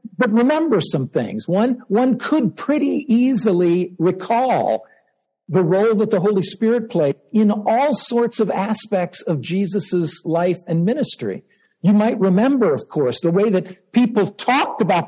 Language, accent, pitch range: English, American, 165-220 Hz